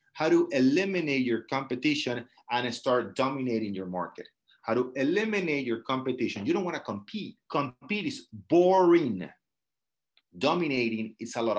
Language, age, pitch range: English, 30-49, 110-135 Hz